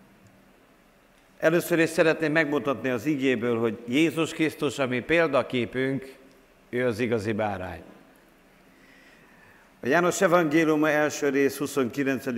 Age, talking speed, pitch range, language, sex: 50-69, 105 wpm, 120-155 Hz, Hungarian, male